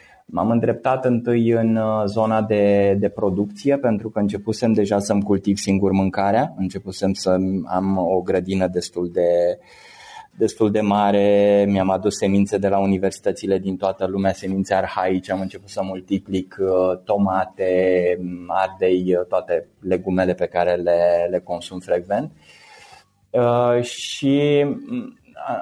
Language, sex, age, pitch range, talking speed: Romanian, male, 20-39, 95-120 Hz, 130 wpm